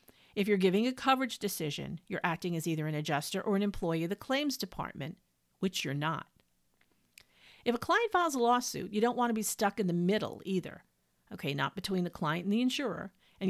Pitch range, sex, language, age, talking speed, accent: 160-220 Hz, female, English, 50-69, 210 wpm, American